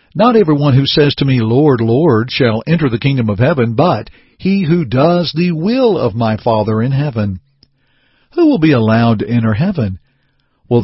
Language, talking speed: English, 185 wpm